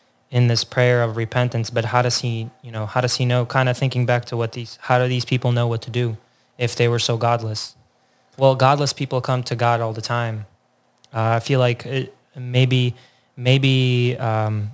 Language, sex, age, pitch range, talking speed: English, male, 20-39, 115-130 Hz, 210 wpm